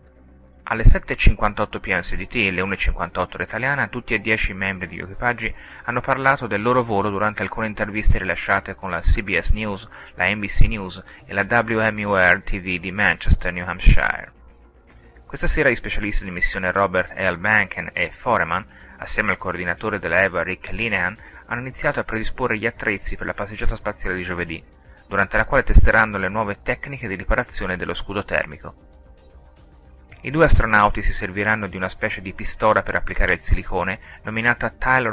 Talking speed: 165 wpm